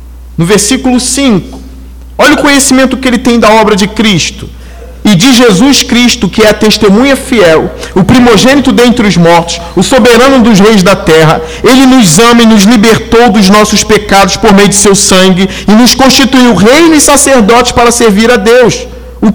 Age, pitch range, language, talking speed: 40-59, 180-245 Hz, Portuguese, 180 wpm